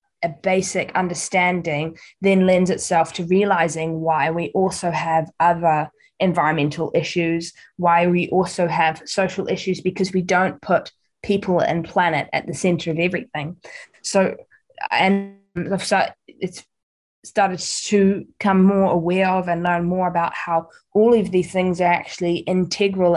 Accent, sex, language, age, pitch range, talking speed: Australian, female, English, 10-29, 165-190 Hz, 140 wpm